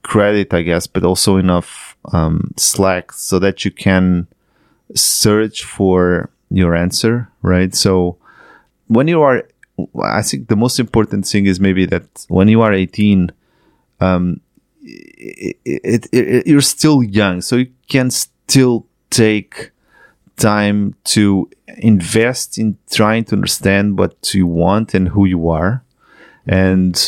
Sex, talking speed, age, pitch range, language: male, 130 wpm, 30-49, 90-105 Hz, English